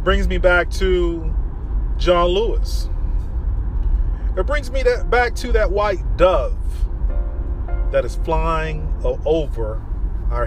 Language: English